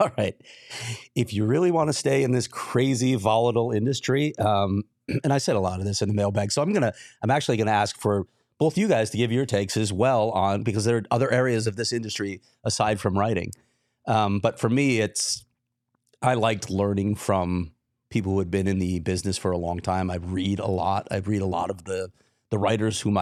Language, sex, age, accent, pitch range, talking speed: English, male, 30-49, American, 100-120 Hz, 225 wpm